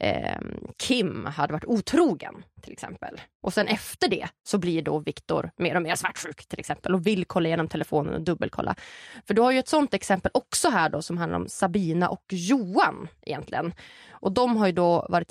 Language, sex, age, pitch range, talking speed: English, female, 20-39, 175-235 Hz, 195 wpm